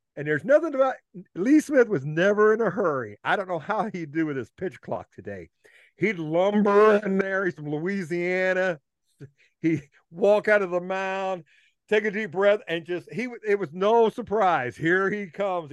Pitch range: 130-180 Hz